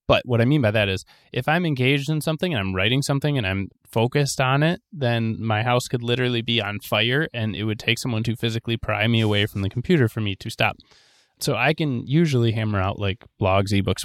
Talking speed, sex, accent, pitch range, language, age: 235 wpm, male, American, 105-130 Hz, English, 20-39